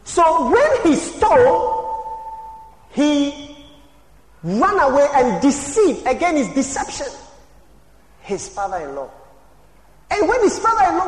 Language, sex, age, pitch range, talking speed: English, male, 40-59, 210-340 Hz, 95 wpm